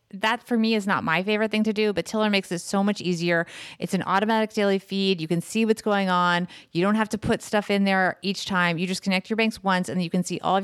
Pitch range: 185-235 Hz